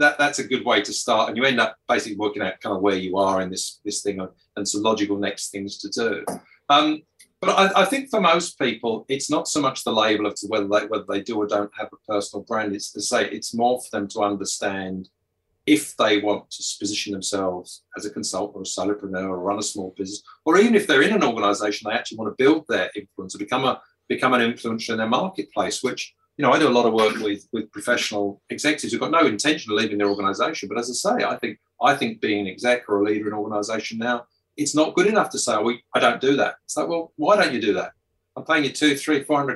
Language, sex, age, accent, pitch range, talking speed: English, male, 40-59, British, 100-130 Hz, 260 wpm